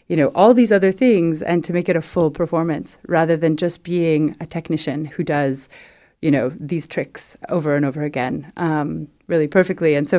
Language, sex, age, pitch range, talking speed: French, female, 30-49, 160-200 Hz, 200 wpm